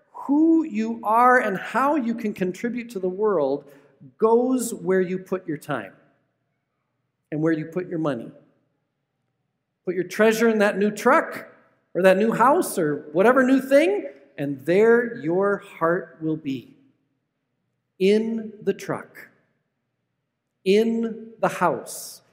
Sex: male